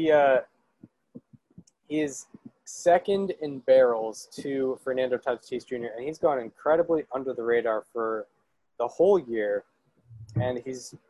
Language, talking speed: English, 125 wpm